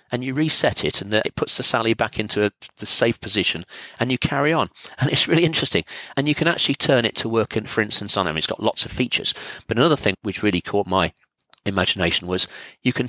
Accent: British